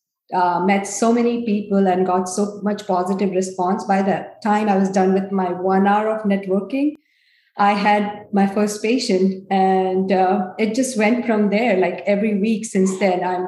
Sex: female